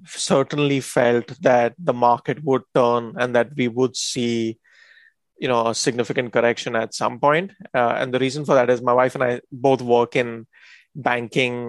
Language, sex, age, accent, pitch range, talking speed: English, male, 20-39, Indian, 120-135 Hz, 180 wpm